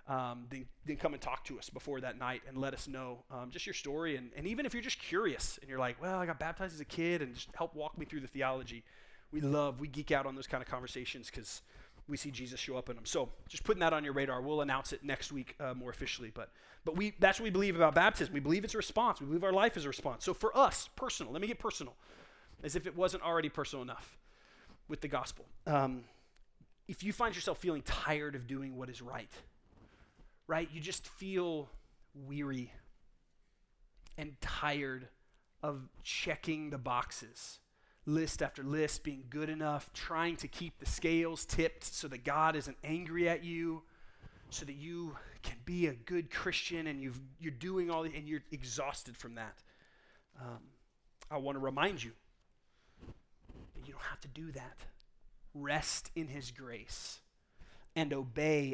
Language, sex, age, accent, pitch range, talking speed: English, male, 30-49, American, 130-165 Hz, 195 wpm